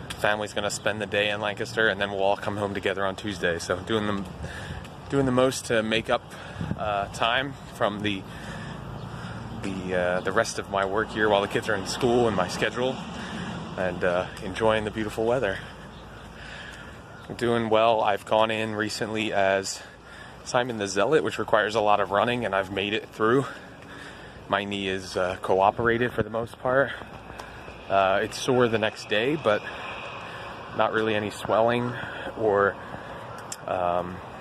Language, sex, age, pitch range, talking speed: English, male, 30-49, 100-120 Hz, 165 wpm